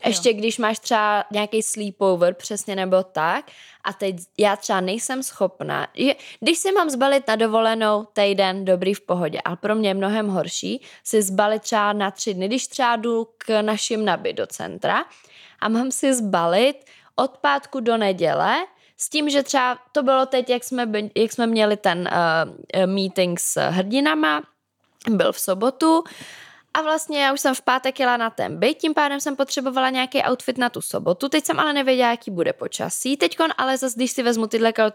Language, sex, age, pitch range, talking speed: Czech, female, 20-39, 210-270 Hz, 180 wpm